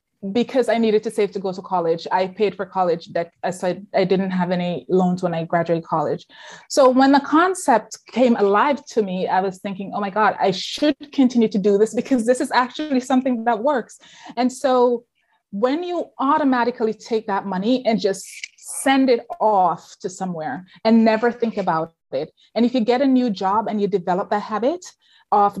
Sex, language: female, English